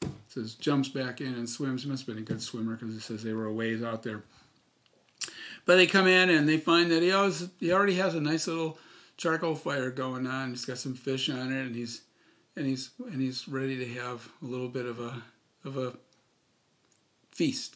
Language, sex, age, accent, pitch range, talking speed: English, male, 50-69, American, 125-165 Hz, 215 wpm